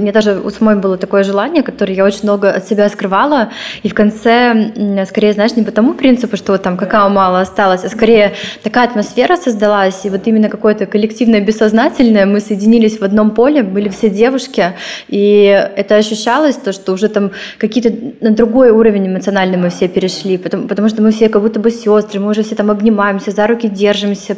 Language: Russian